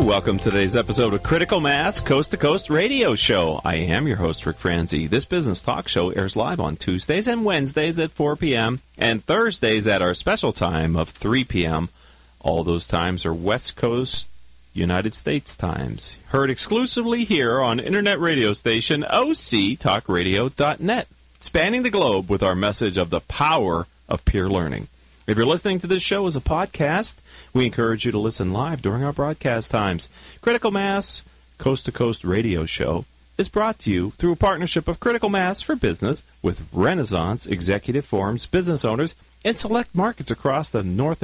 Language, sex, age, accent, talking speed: English, male, 40-59, American, 165 wpm